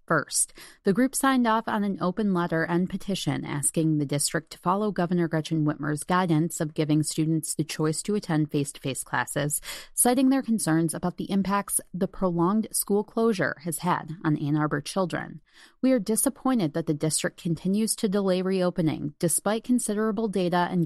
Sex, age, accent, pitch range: female, 30-49, American, 160-210 Hz